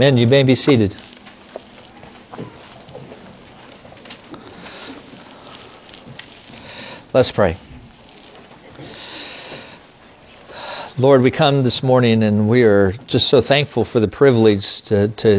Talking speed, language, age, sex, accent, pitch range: 85 wpm, English, 50-69, male, American, 105-125 Hz